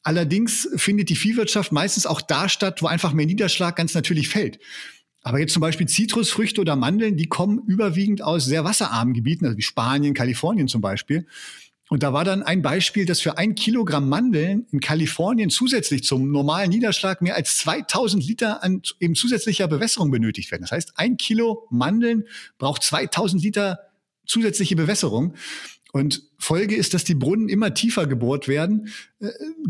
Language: German